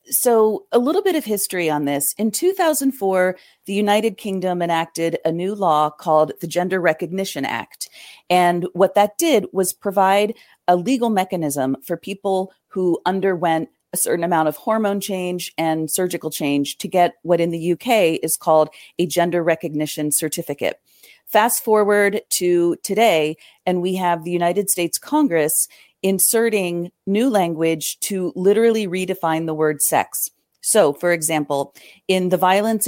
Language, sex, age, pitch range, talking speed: English, female, 40-59, 160-195 Hz, 150 wpm